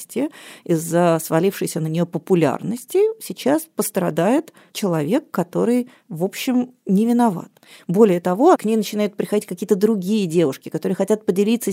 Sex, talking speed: female, 130 wpm